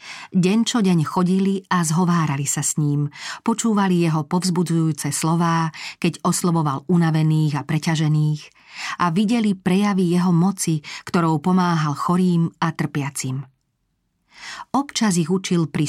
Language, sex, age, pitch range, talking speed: Slovak, female, 40-59, 155-185 Hz, 120 wpm